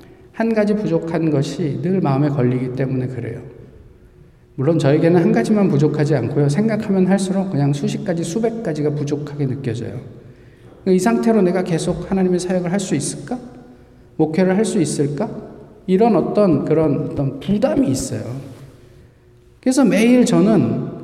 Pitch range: 135-200 Hz